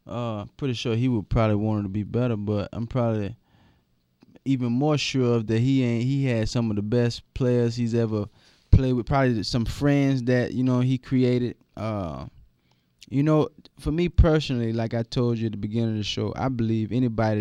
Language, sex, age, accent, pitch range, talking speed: English, male, 20-39, American, 105-125 Hz, 205 wpm